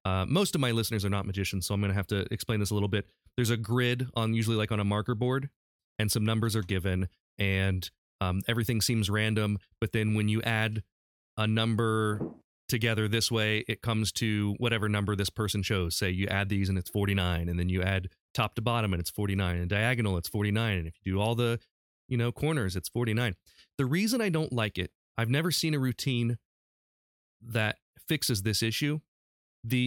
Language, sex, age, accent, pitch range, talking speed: English, male, 30-49, American, 100-125 Hz, 210 wpm